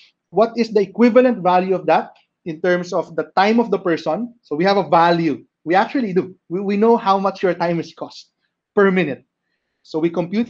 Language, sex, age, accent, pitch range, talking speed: English, male, 30-49, Filipino, 170-220 Hz, 210 wpm